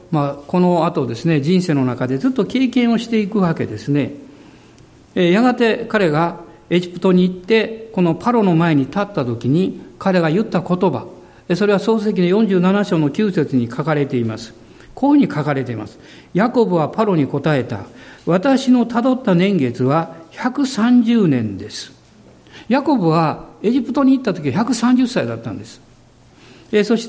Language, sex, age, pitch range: Japanese, male, 50-69, 150-235 Hz